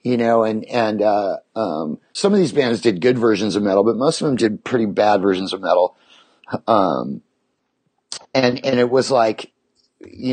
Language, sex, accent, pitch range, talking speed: English, male, American, 110-130 Hz, 185 wpm